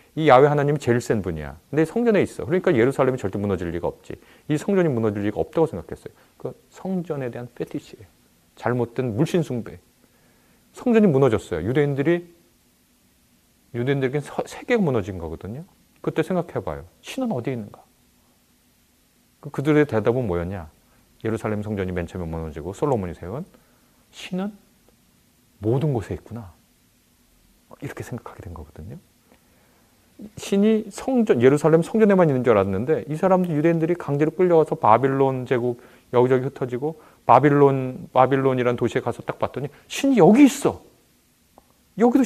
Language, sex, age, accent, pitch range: Korean, male, 40-59, native, 110-170 Hz